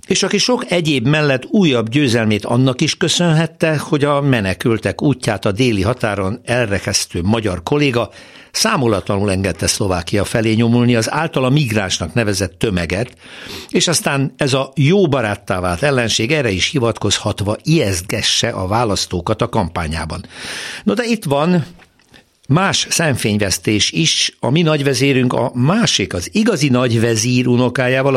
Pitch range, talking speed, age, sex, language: 100-145 Hz, 130 wpm, 60-79, male, Hungarian